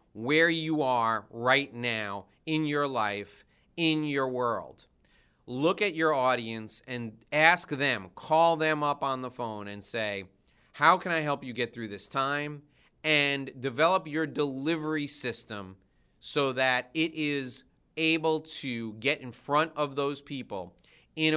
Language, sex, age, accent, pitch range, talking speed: English, male, 30-49, American, 115-150 Hz, 150 wpm